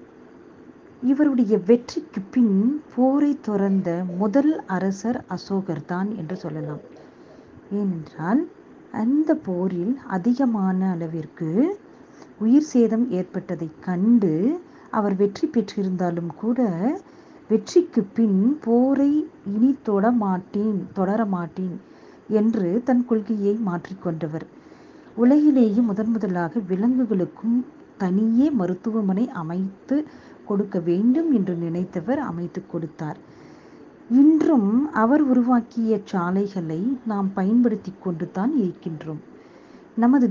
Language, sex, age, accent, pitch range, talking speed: Tamil, female, 50-69, native, 185-255 Hz, 80 wpm